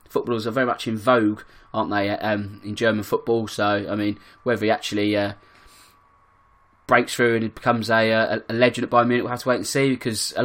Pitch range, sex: 110-145 Hz, male